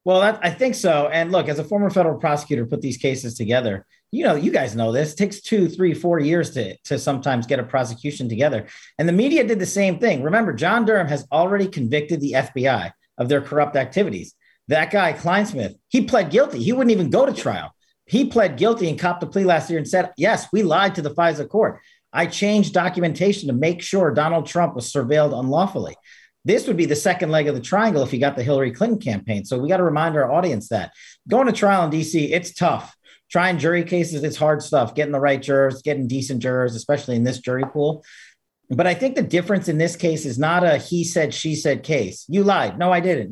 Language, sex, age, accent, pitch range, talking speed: English, male, 40-59, American, 140-185 Hz, 225 wpm